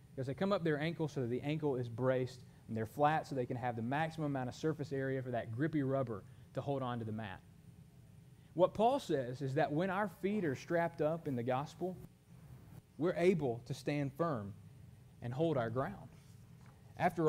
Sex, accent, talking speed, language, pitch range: male, American, 205 wpm, English, 135-170 Hz